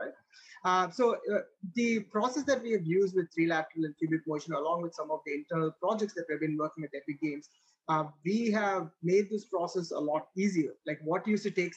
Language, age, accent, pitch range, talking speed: English, 30-49, Indian, 155-195 Hz, 215 wpm